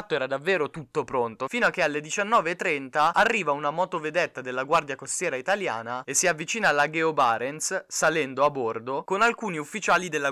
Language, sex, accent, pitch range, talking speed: Italian, male, native, 125-165 Hz, 165 wpm